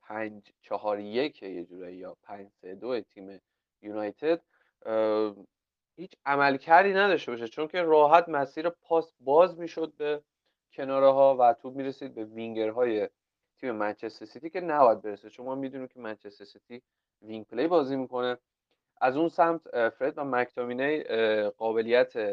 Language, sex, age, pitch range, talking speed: Persian, male, 30-49, 105-140 Hz, 145 wpm